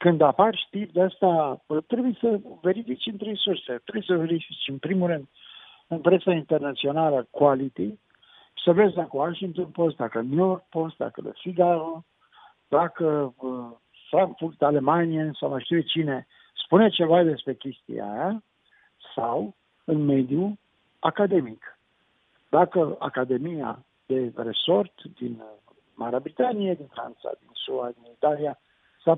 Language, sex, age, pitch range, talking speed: Romanian, male, 60-79, 145-200 Hz, 125 wpm